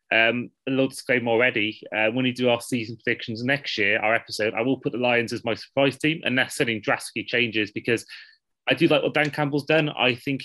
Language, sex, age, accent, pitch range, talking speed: English, male, 30-49, British, 115-145 Hz, 230 wpm